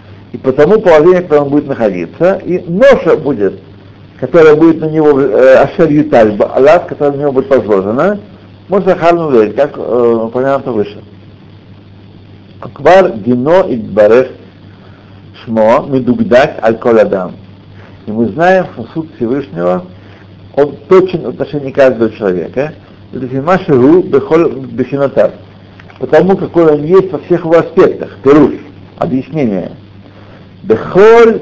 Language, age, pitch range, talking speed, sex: Russian, 60-79, 100-170 Hz, 120 wpm, male